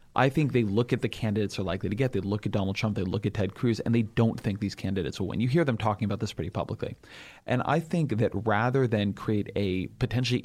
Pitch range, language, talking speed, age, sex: 105-125 Hz, English, 265 wpm, 30-49, male